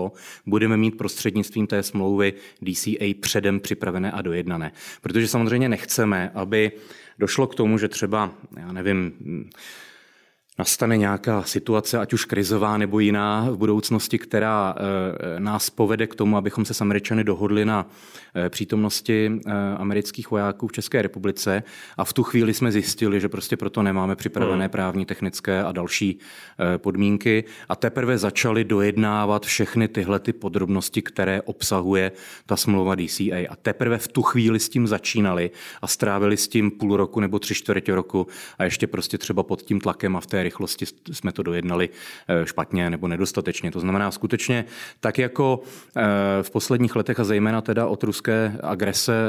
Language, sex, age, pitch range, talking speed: Czech, male, 30-49, 100-110 Hz, 155 wpm